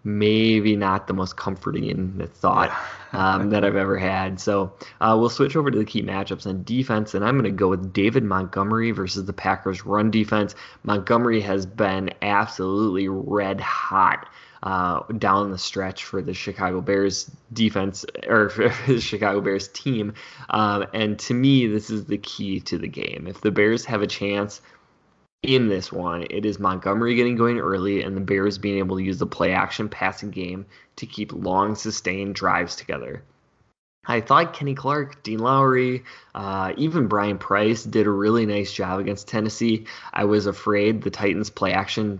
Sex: male